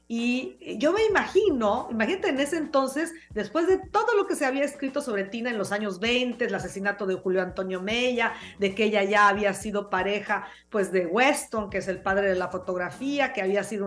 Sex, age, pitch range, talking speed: female, 40-59, 200-275 Hz, 210 wpm